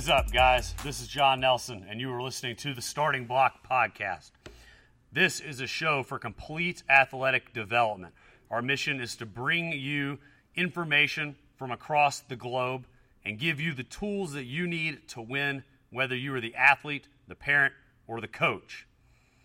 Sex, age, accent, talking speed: male, 30-49, American, 175 wpm